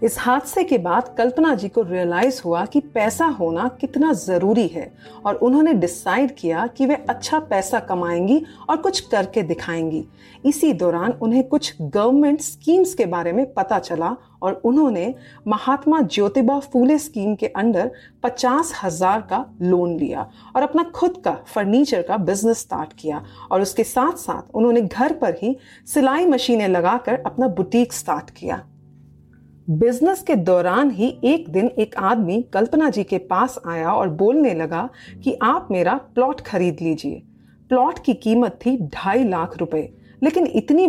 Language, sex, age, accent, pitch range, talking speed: Hindi, female, 40-59, native, 185-270 Hz, 155 wpm